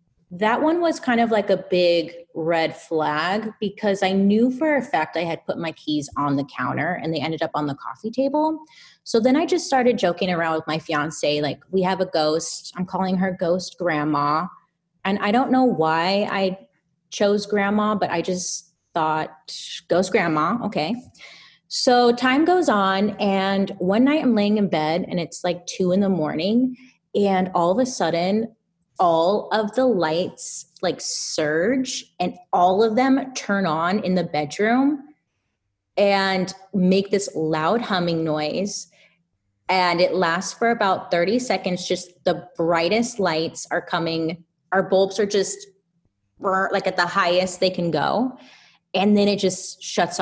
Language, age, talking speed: English, 30-49, 165 wpm